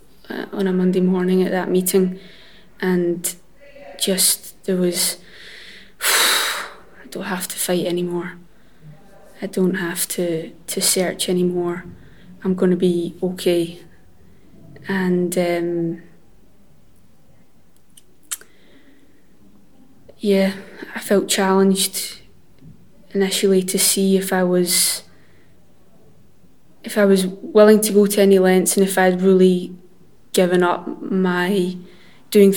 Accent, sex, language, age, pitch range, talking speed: British, female, English, 20-39, 180-195 Hz, 110 wpm